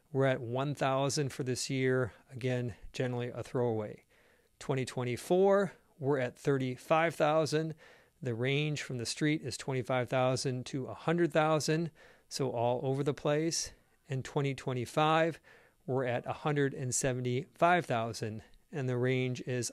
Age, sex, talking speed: 50-69, male, 115 wpm